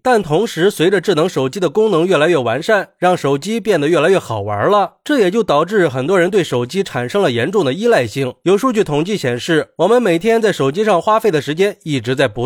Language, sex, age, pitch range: Chinese, male, 20-39, 140-200 Hz